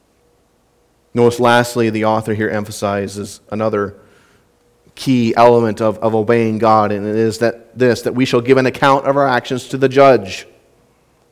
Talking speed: 160 wpm